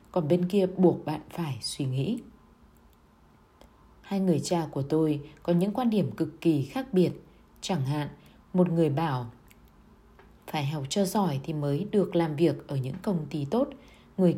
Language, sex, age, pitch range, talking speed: Vietnamese, female, 20-39, 145-185 Hz, 170 wpm